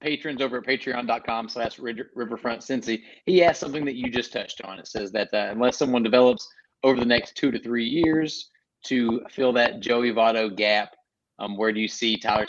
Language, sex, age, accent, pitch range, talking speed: English, male, 30-49, American, 110-135 Hz, 195 wpm